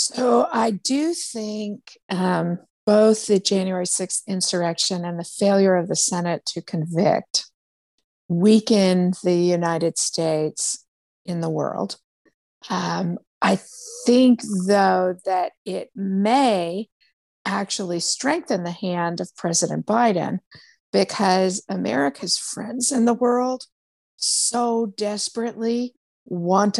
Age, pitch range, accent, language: 50-69, 175-215 Hz, American, English